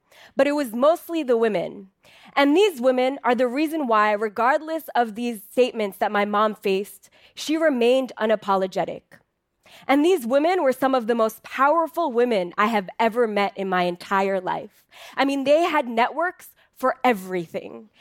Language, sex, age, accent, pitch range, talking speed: English, female, 20-39, American, 210-265 Hz, 165 wpm